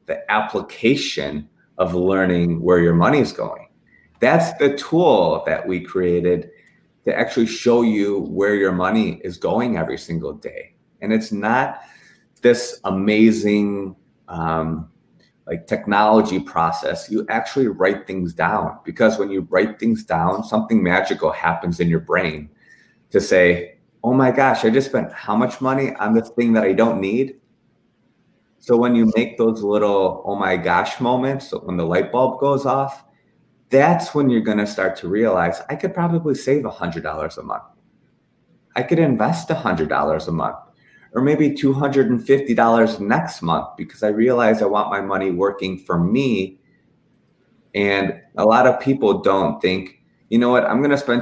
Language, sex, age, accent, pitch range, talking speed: English, male, 30-49, American, 95-125 Hz, 160 wpm